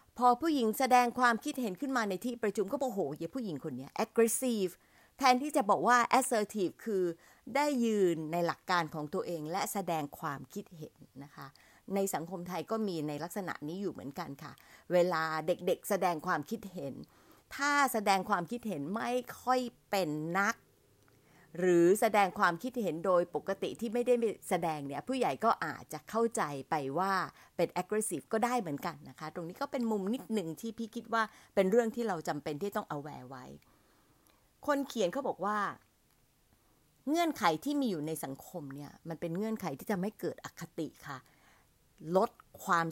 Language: Thai